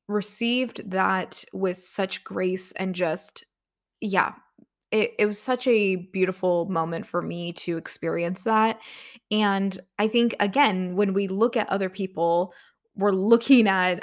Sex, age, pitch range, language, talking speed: female, 20-39, 180-215 Hz, English, 140 wpm